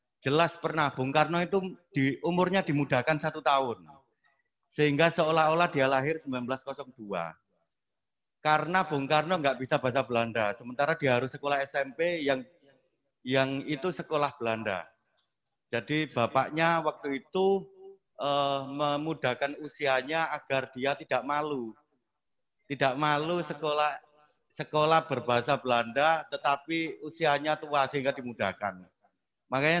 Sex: male